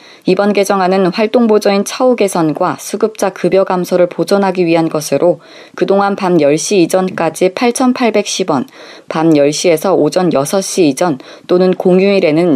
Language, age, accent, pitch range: Korean, 20-39, native, 170-210 Hz